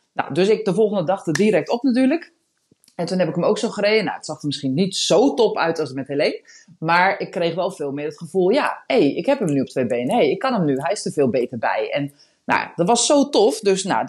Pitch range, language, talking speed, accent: 150-220 Hz, Dutch, 295 wpm, Dutch